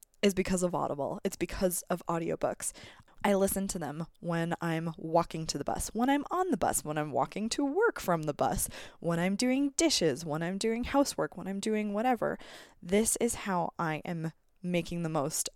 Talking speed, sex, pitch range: 195 wpm, female, 160-200 Hz